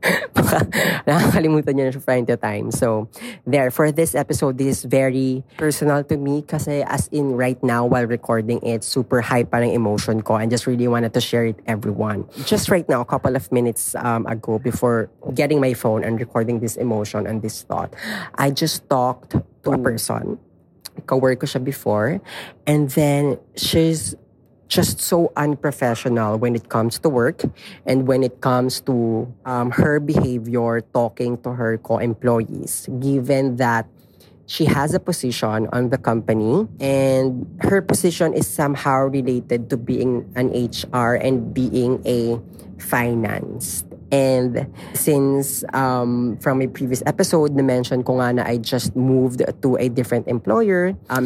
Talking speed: 150 wpm